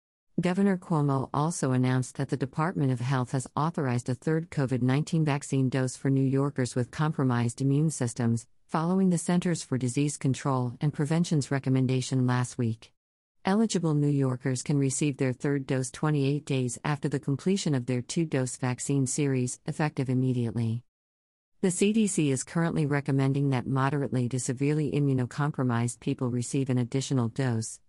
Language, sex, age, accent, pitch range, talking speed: English, female, 50-69, American, 125-155 Hz, 150 wpm